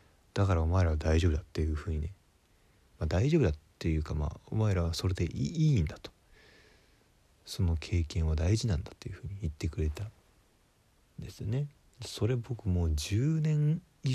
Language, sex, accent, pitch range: Japanese, male, native, 80-105 Hz